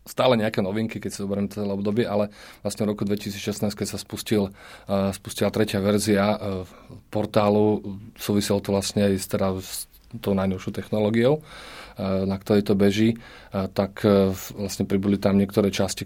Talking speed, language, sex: 170 wpm, Slovak, male